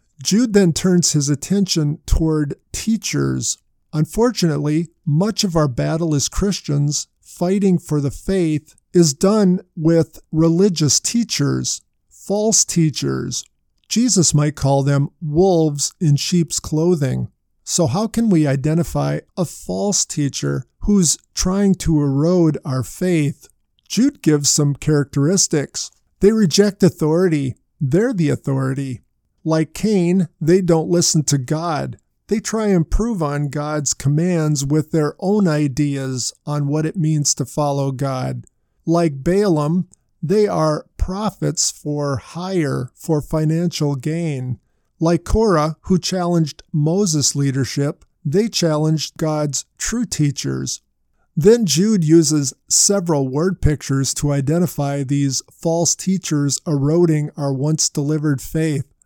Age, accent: 50-69, American